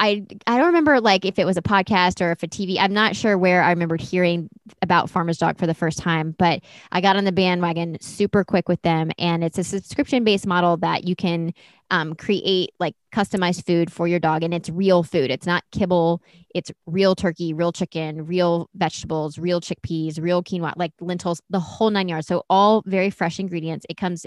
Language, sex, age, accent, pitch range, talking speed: English, female, 20-39, American, 170-195 Hz, 215 wpm